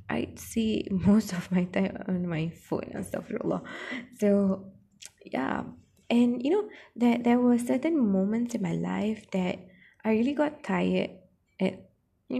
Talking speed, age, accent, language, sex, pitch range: 145 wpm, 20-39, Malaysian, English, female, 180-225 Hz